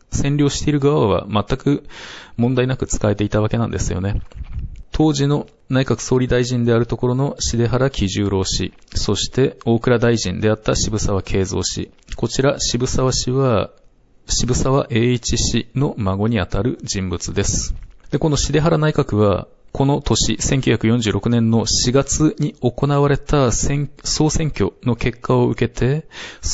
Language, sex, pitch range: Japanese, male, 105-130 Hz